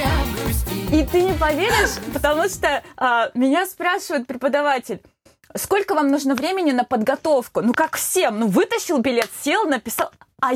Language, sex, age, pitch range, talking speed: Russian, female, 20-39, 225-300 Hz, 140 wpm